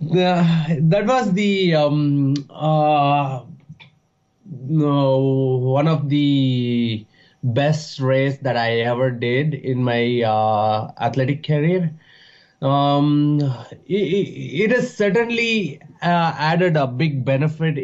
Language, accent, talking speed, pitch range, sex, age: English, Indian, 100 wpm, 130-160 Hz, male, 20-39